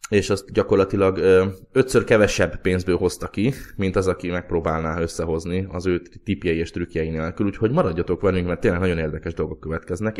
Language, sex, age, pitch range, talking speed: Hungarian, male, 20-39, 85-105 Hz, 165 wpm